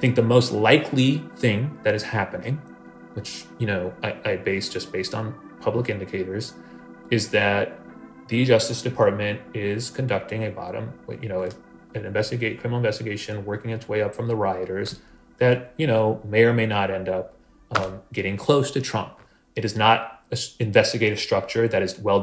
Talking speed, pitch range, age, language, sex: 175 wpm, 95-120 Hz, 30-49, English, male